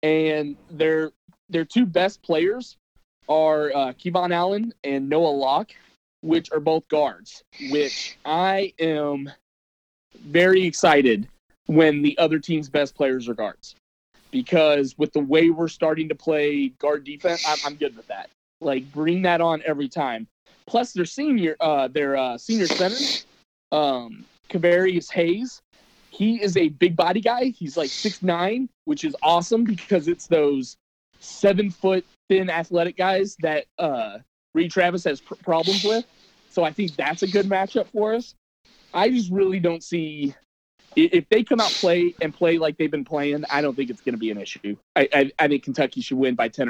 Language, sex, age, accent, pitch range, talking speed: English, male, 20-39, American, 145-190 Hz, 165 wpm